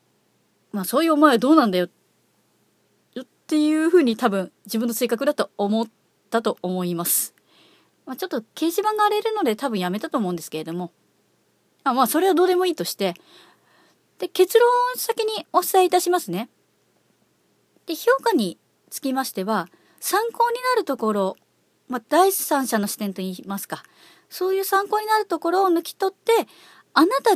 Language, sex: Japanese, female